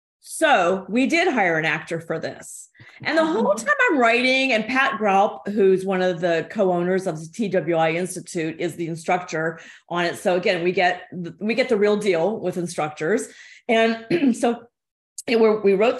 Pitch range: 175-225 Hz